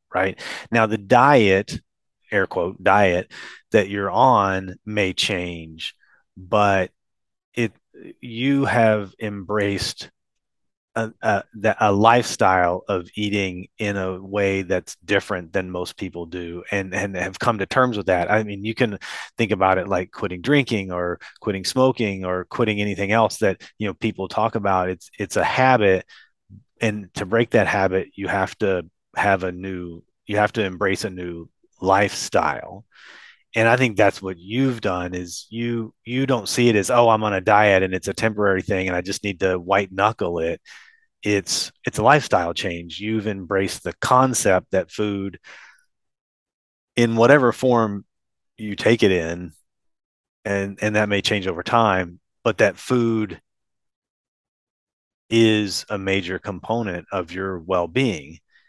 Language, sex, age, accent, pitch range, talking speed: English, male, 30-49, American, 95-115 Hz, 155 wpm